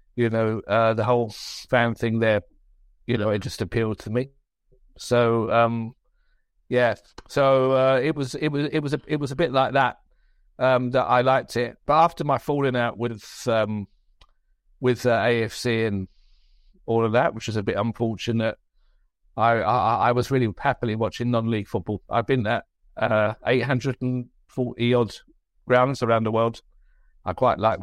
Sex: male